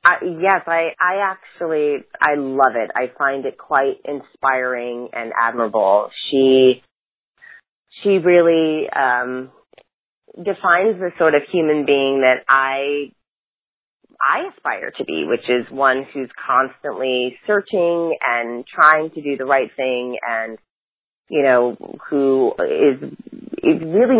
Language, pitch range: English, 125-155 Hz